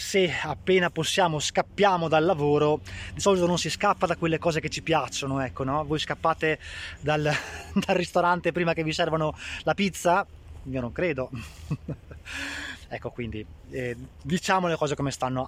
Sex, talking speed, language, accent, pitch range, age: male, 160 wpm, Italian, native, 130-175 Hz, 20-39